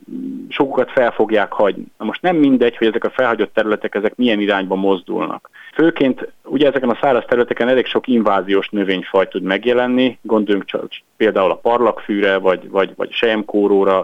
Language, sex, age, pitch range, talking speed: Hungarian, male, 30-49, 100-140 Hz, 165 wpm